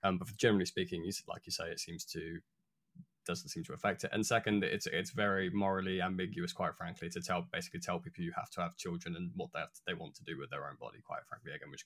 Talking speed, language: 260 wpm, English